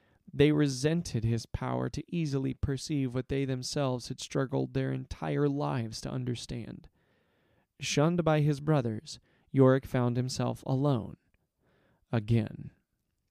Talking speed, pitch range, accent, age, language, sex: 115 wpm, 115-135 Hz, American, 30-49, English, male